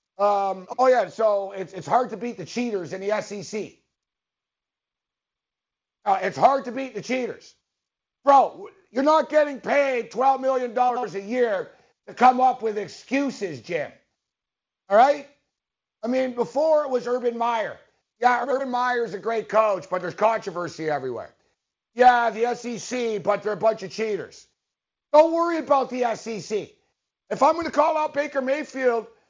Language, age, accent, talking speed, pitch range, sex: English, 50-69, American, 160 wpm, 210-275 Hz, male